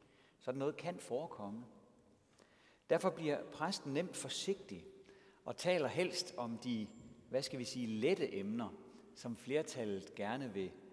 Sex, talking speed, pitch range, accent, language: male, 130 wpm, 110-180 Hz, native, Danish